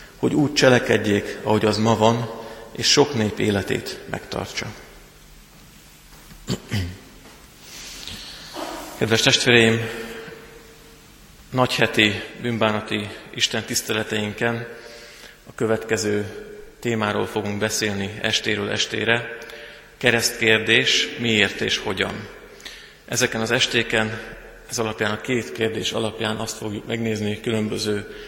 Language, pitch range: Hungarian, 110-120 Hz